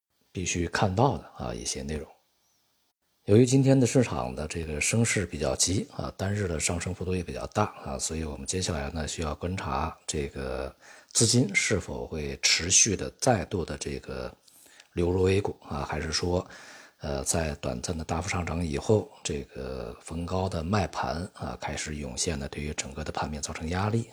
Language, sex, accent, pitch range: Chinese, male, native, 70-90 Hz